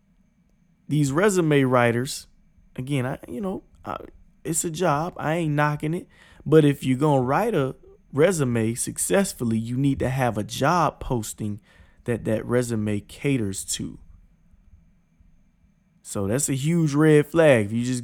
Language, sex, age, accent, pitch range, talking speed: English, male, 20-39, American, 115-155 Hz, 150 wpm